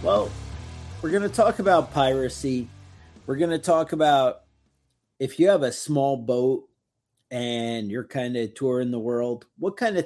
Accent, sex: American, male